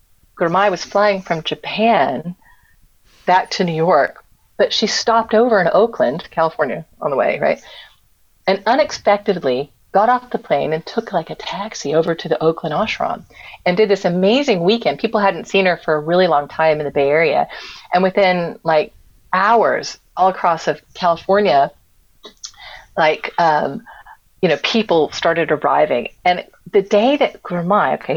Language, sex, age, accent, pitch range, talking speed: English, female, 40-59, American, 160-205 Hz, 160 wpm